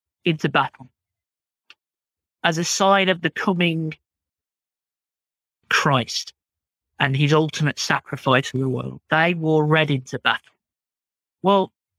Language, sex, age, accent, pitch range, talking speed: English, male, 50-69, British, 130-180 Hz, 110 wpm